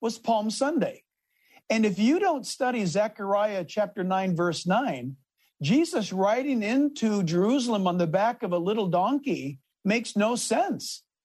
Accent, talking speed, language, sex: American, 145 wpm, English, male